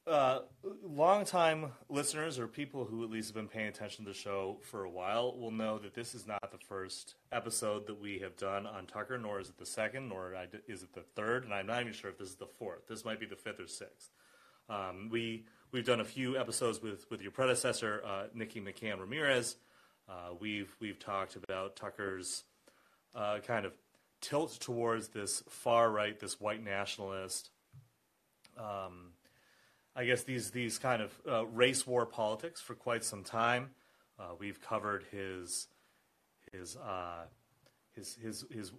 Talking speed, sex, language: 180 wpm, male, English